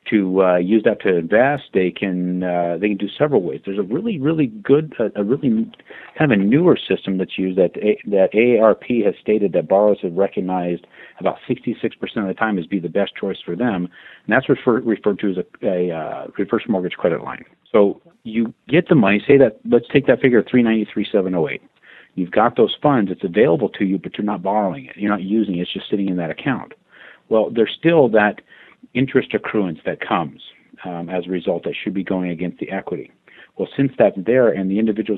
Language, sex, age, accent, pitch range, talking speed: English, male, 50-69, American, 90-110 Hz, 215 wpm